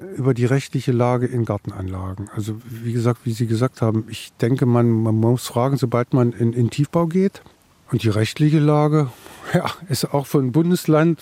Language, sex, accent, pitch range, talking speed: German, male, German, 115-145 Hz, 180 wpm